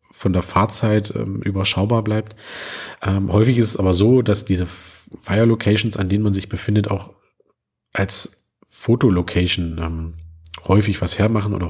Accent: German